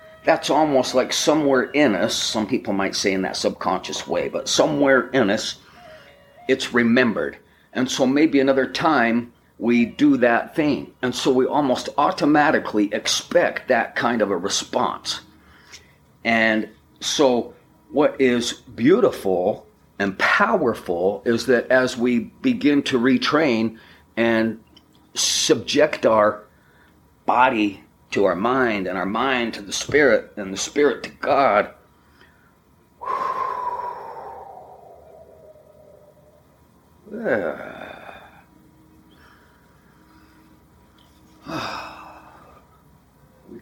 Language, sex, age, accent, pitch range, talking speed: English, male, 40-59, American, 100-135 Hz, 100 wpm